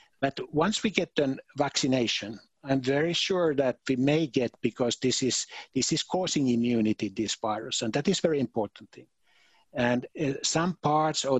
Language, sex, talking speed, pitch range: Swahili, male, 175 wpm, 115-135 Hz